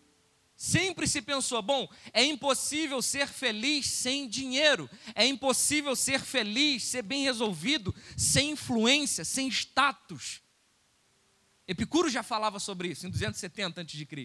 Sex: male